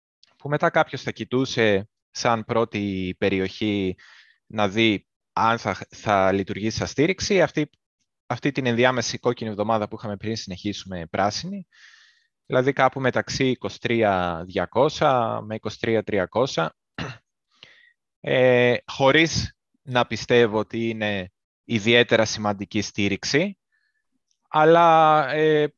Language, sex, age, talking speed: Greek, male, 20-39, 100 wpm